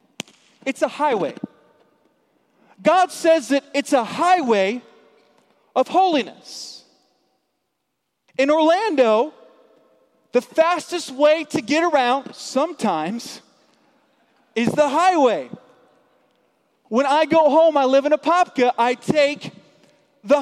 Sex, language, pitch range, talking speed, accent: male, English, 255-320 Hz, 105 wpm, American